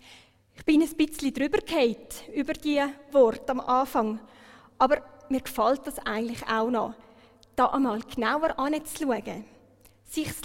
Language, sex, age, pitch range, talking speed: German, female, 30-49, 225-280 Hz, 140 wpm